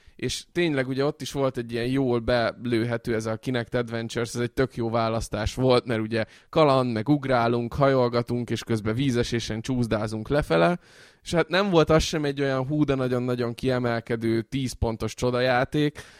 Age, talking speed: 20-39, 165 wpm